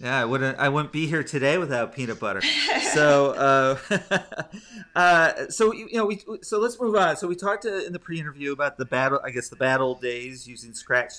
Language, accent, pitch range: English, American, 115-160 Hz